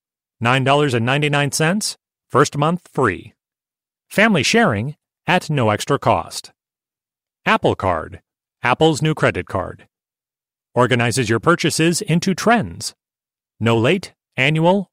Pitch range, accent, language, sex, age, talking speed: 120-165 Hz, American, English, male, 40-59, 90 wpm